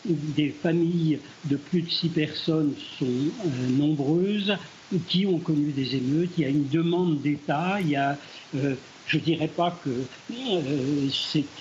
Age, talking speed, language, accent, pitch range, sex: 60-79, 165 wpm, French, French, 145-175 Hz, male